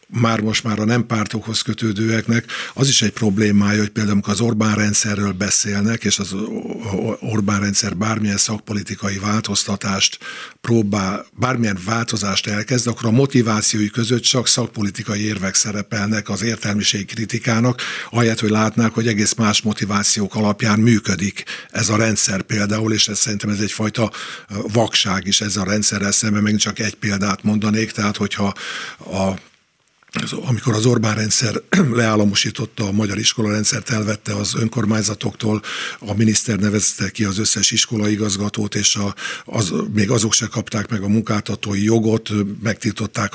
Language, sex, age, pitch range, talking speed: Hungarian, male, 50-69, 105-115 Hz, 140 wpm